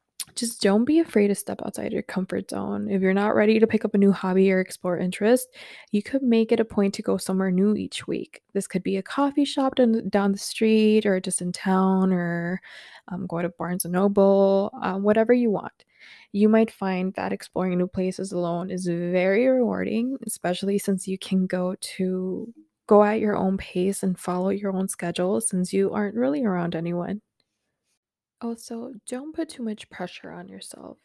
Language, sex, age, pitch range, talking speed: English, female, 20-39, 180-210 Hz, 195 wpm